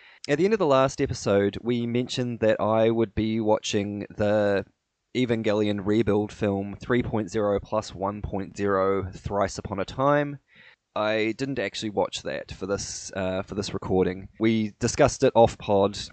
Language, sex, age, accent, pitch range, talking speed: English, male, 20-39, Australian, 100-125 Hz, 150 wpm